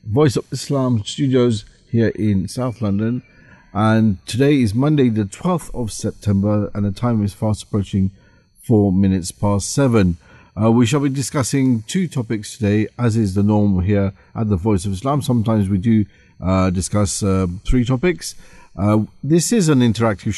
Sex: male